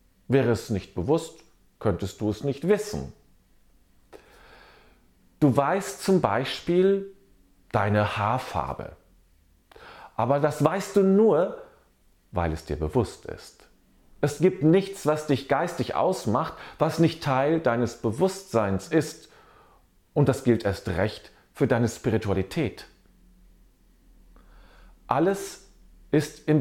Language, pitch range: German, 95-150 Hz